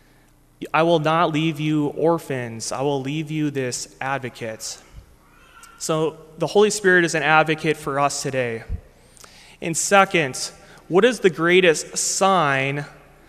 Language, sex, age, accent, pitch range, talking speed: English, male, 20-39, American, 140-180 Hz, 130 wpm